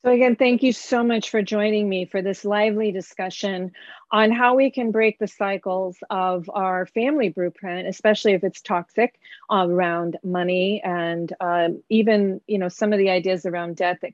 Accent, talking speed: American, 185 wpm